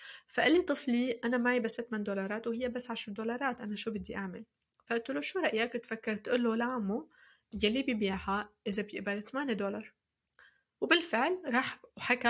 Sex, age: female, 20-39